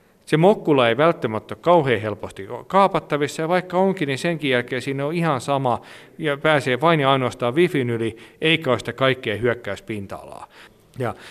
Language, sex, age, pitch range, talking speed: Finnish, male, 40-59, 110-150 Hz, 160 wpm